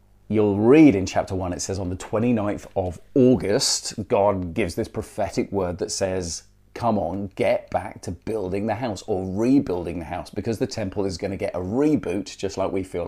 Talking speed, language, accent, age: 195 wpm, English, British, 40-59